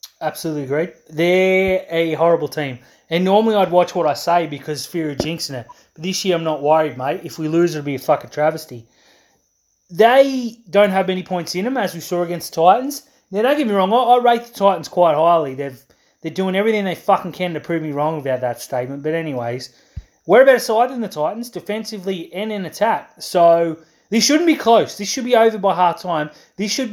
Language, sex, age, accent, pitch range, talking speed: English, male, 30-49, Australian, 165-220 Hz, 215 wpm